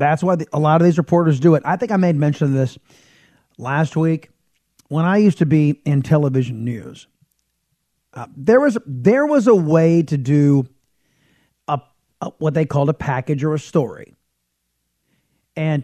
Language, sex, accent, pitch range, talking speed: English, male, American, 140-180 Hz, 175 wpm